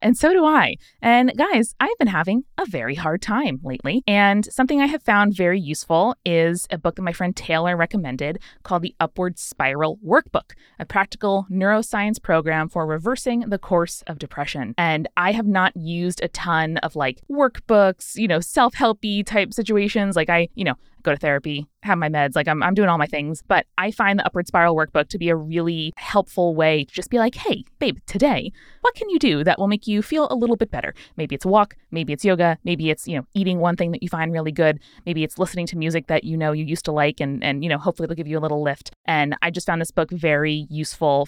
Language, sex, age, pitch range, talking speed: English, female, 20-39, 160-205 Hz, 235 wpm